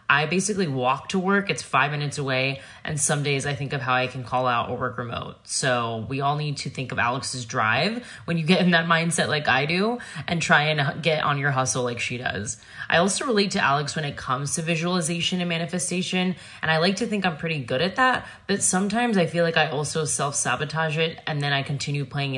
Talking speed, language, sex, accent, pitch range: 235 wpm, English, female, American, 135-170 Hz